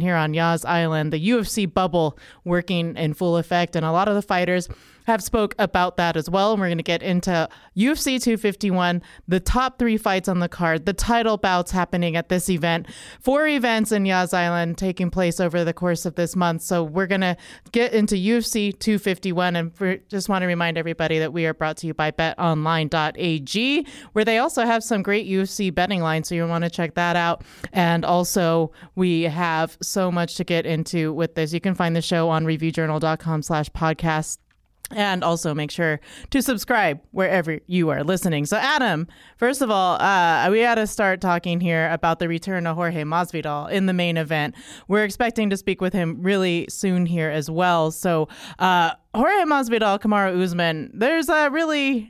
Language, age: English, 30-49